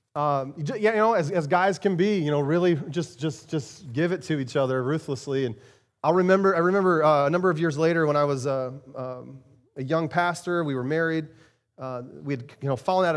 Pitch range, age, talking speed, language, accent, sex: 120-150 Hz, 30-49, 230 wpm, English, American, male